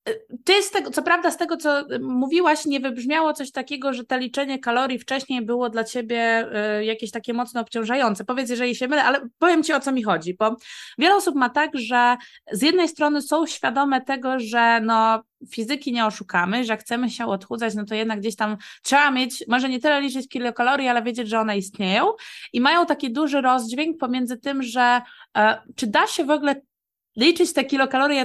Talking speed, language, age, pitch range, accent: 200 wpm, Polish, 20-39, 235-290 Hz, native